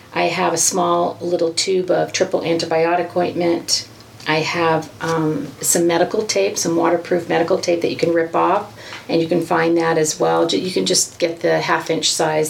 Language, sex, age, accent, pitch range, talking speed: English, female, 40-59, American, 160-180 Hz, 190 wpm